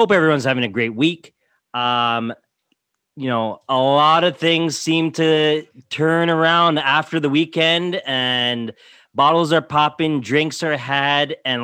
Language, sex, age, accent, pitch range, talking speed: English, male, 30-49, American, 125-155 Hz, 145 wpm